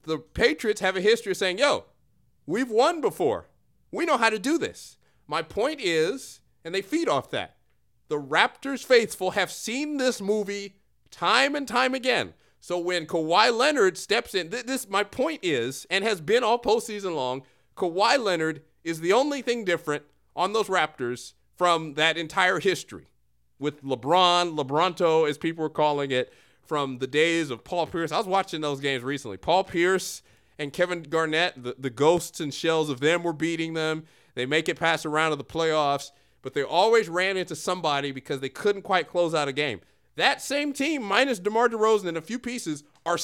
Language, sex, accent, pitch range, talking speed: English, male, American, 150-215 Hz, 190 wpm